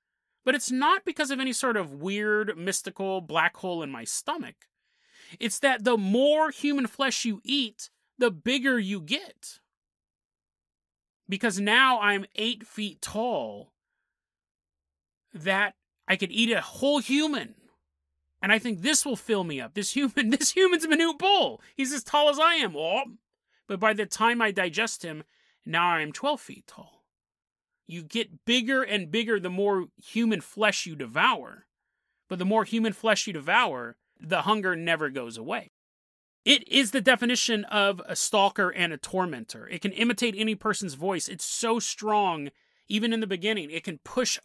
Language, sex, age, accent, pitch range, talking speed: English, male, 30-49, American, 190-255 Hz, 165 wpm